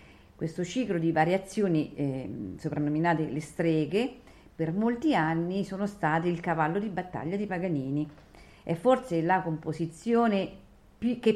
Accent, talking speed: native, 125 wpm